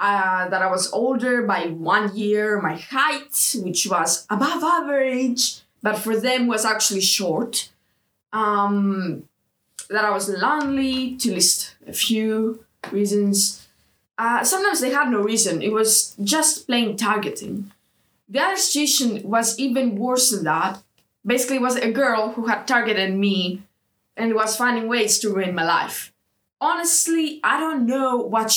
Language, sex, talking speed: English, female, 150 wpm